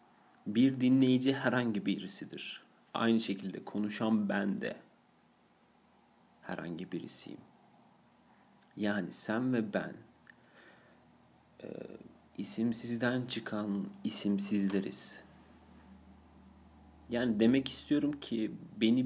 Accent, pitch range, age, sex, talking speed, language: native, 100-120 Hz, 40-59, male, 70 wpm, Turkish